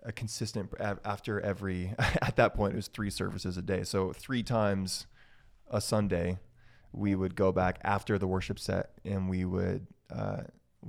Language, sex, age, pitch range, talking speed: English, male, 20-39, 90-100 Hz, 165 wpm